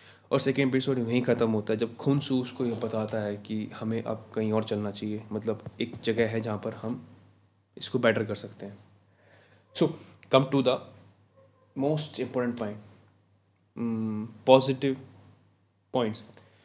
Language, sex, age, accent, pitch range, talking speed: Hindi, male, 20-39, native, 105-120 Hz, 150 wpm